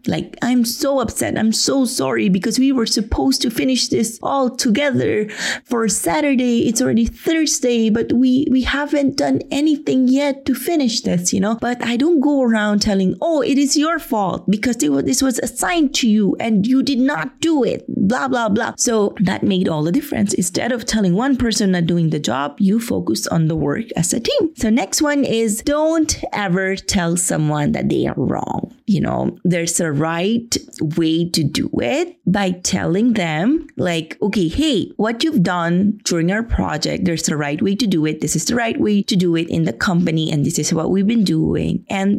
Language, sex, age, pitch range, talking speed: English, female, 30-49, 175-260 Hz, 205 wpm